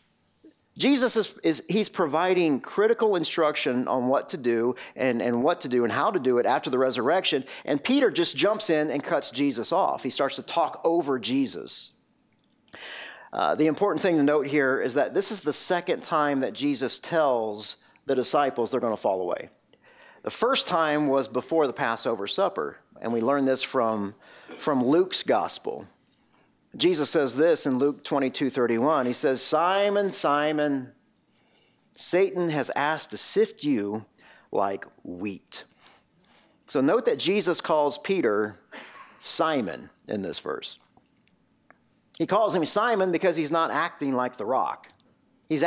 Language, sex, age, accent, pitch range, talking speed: English, male, 40-59, American, 135-205 Hz, 160 wpm